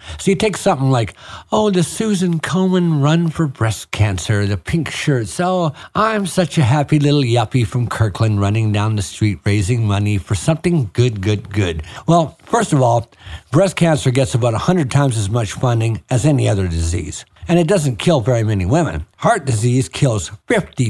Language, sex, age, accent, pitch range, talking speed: English, male, 60-79, American, 110-180 Hz, 185 wpm